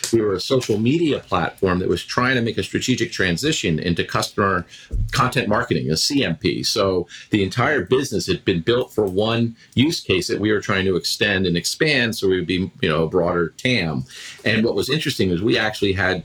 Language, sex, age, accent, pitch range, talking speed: English, male, 50-69, American, 95-125 Hz, 205 wpm